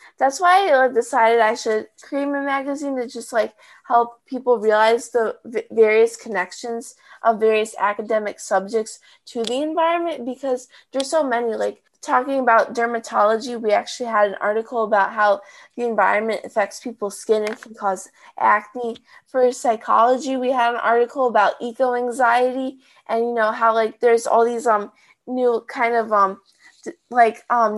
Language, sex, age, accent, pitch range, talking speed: English, female, 20-39, American, 215-260 Hz, 160 wpm